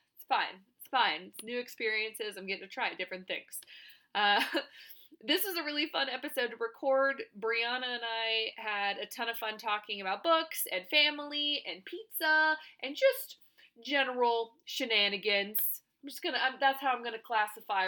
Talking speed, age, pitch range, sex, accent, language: 160 wpm, 20-39, 205-270 Hz, female, American, English